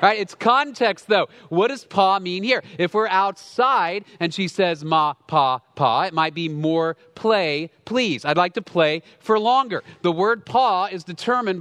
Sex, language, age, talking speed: male, English, 40-59, 185 wpm